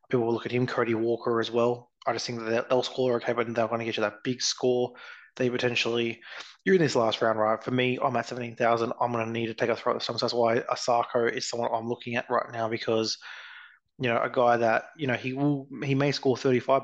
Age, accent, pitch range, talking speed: 20-39, Australian, 115-125 Hz, 255 wpm